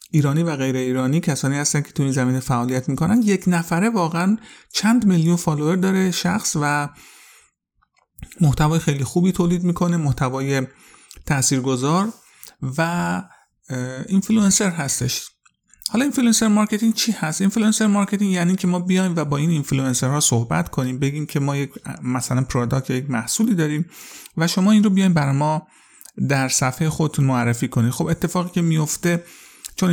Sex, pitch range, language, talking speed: male, 130-180 Hz, Persian, 145 wpm